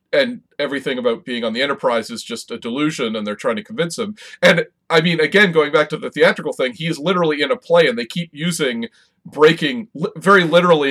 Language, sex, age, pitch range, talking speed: English, male, 40-59, 140-215 Hz, 220 wpm